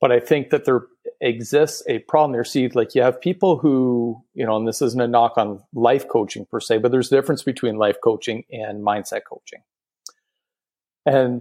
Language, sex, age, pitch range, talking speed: English, male, 40-59, 115-150 Hz, 200 wpm